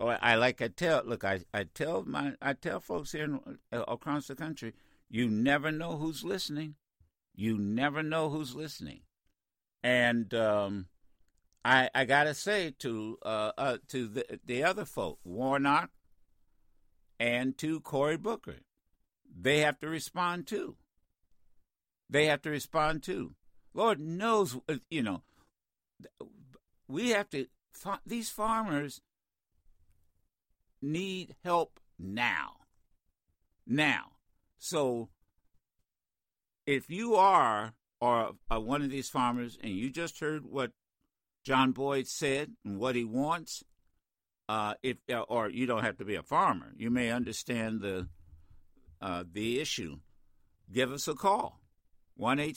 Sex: male